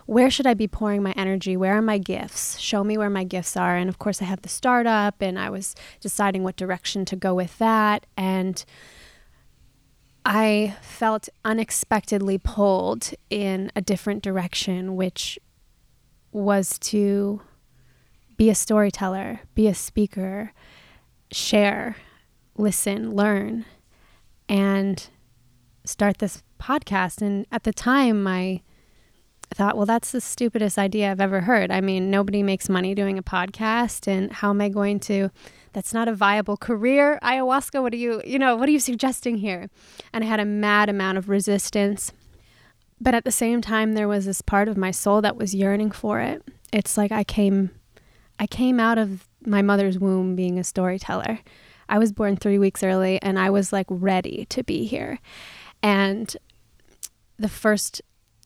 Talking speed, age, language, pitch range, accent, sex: 165 wpm, 20-39, English, 190-215 Hz, American, female